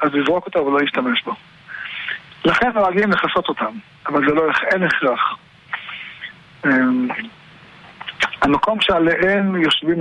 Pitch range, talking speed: 150-195 Hz, 110 wpm